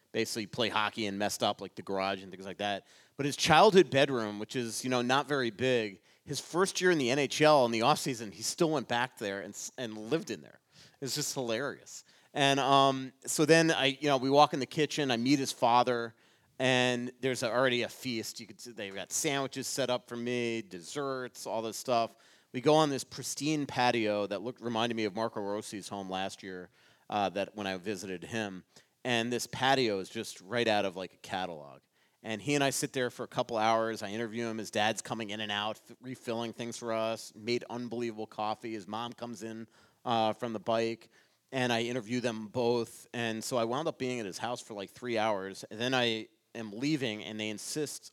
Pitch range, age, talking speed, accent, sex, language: 105-130 Hz, 30-49, 220 wpm, American, male, English